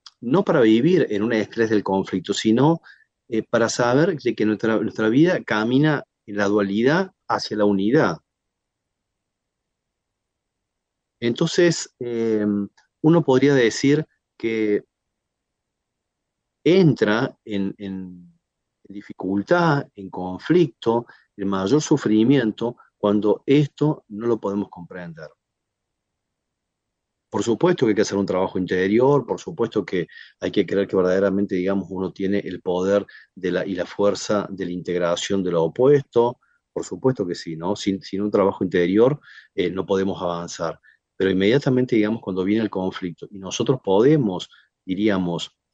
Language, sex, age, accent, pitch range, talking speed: Spanish, male, 40-59, Argentinian, 95-120 Hz, 130 wpm